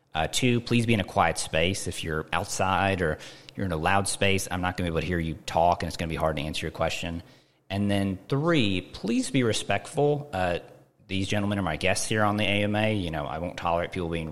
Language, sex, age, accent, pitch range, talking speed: English, male, 30-49, American, 85-110 Hz, 250 wpm